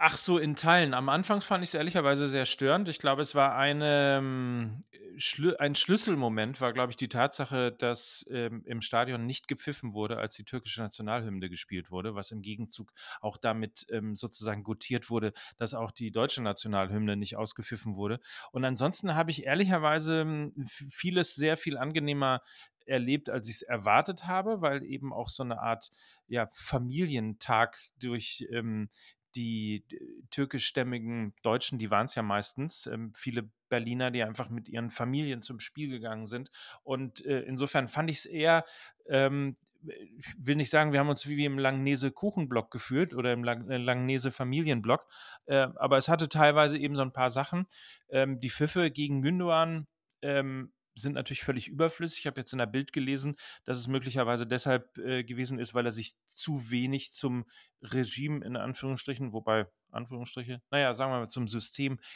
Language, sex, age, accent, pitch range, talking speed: German, male, 40-59, German, 120-145 Hz, 160 wpm